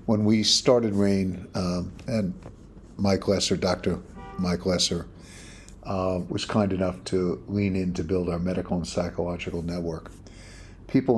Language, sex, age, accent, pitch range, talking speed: English, male, 50-69, American, 90-105 Hz, 140 wpm